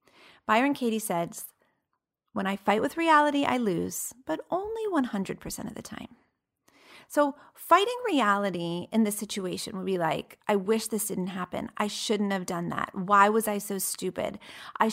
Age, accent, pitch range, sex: 30-49, American, 195-255 Hz, female